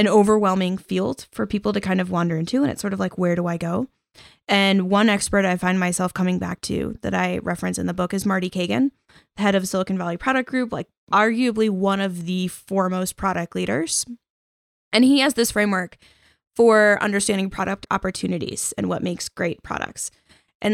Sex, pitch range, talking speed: female, 185-225 Hz, 190 wpm